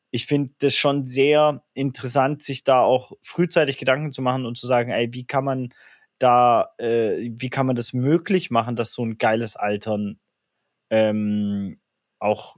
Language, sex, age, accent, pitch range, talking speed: German, male, 20-39, German, 110-135 Hz, 165 wpm